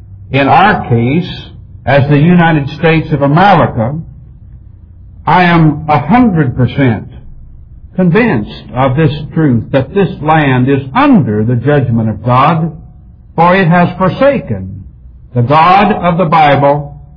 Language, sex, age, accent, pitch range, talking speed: English, male, 60-79, American, 125-185 Hz, 120 wpm